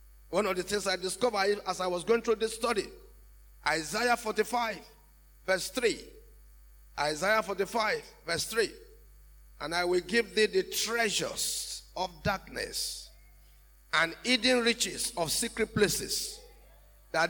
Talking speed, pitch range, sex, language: 130 wpm, 175-270 Hz, male, English